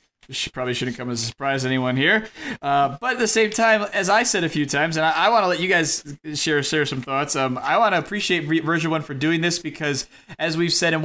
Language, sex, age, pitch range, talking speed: English, male, 20-39, 135-165 Hz, 260 wpm